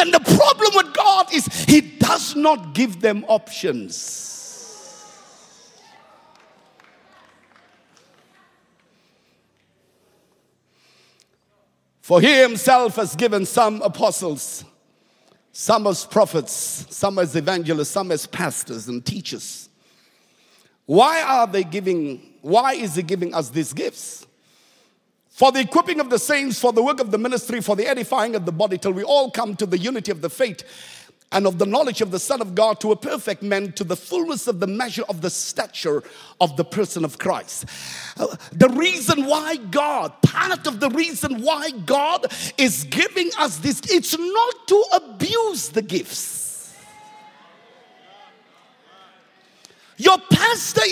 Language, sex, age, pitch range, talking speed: English, male, 50-69, 200-320 Hz, 140 wpm